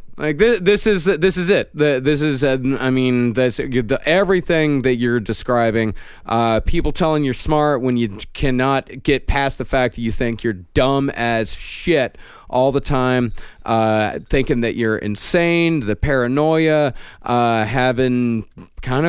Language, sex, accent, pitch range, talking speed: English, male, American, 120-155 Hz, 155 wpm